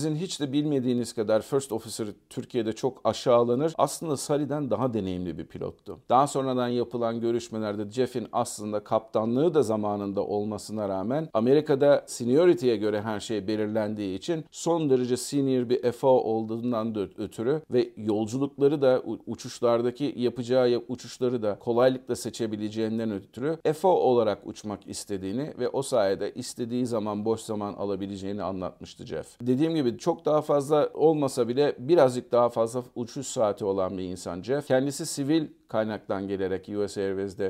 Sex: male